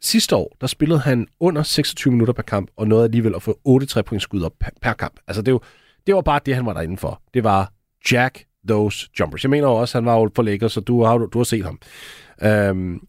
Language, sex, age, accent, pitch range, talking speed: Danish, male, 40-59, native, 105-140 Hz, 245 wpm